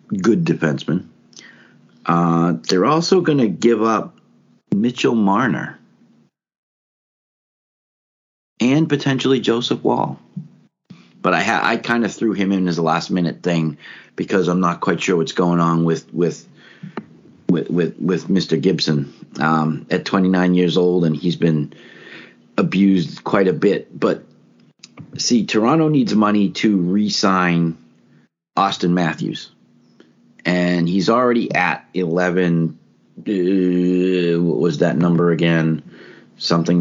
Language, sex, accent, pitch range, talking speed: English, male, American, 85-100 Hz, 125 wpm